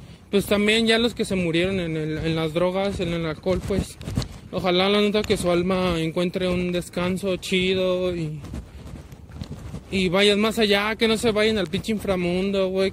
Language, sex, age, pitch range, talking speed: Spanish, male, 20-39, 175-205 Hz, 180 wpm